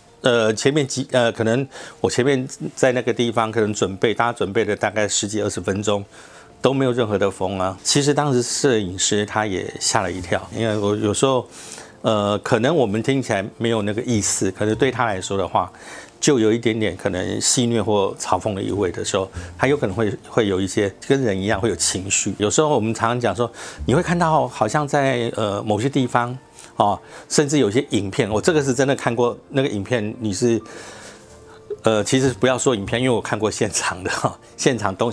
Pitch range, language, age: 100-125 Hz, Chinese, 50-69